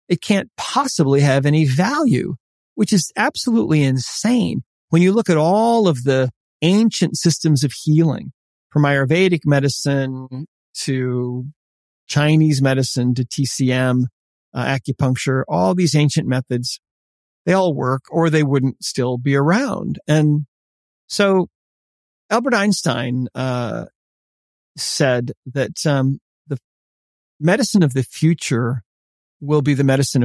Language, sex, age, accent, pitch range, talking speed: English, male, 50-69, American, 130-170 Hz, 120 wpm